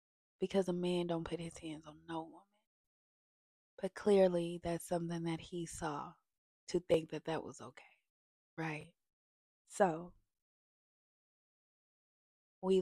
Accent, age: American, 20-39